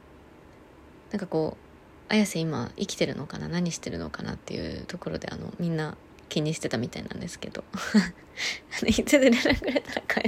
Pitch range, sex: 155-200 Hz, female